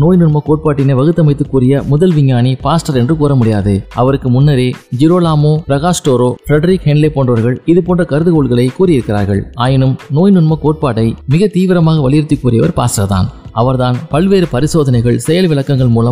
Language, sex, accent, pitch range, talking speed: Tamil, male, native, 125-160 Hz, 130 wpm